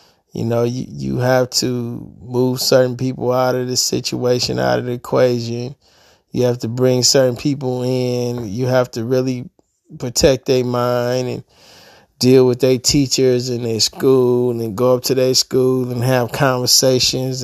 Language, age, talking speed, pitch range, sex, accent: English, 20-39, 170 wpm, 115-130 Hz, male, American